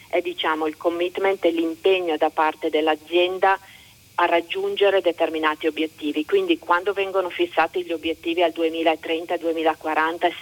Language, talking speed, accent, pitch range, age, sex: Italian, 120 wpm, native, 160-180 Hz, 40-59, female